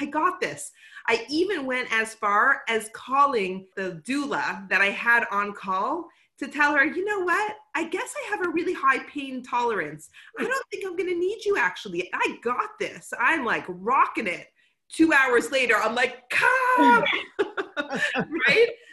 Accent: American